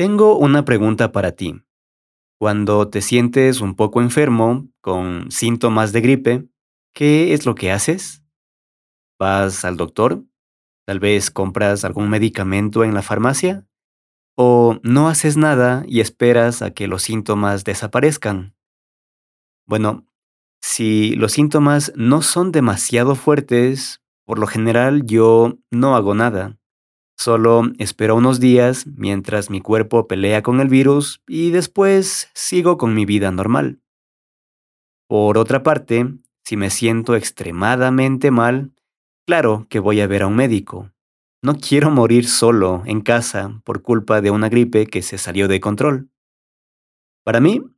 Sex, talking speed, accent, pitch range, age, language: male, 135 wpm, Mexican, 100-130 Hz, 30-49, Spanish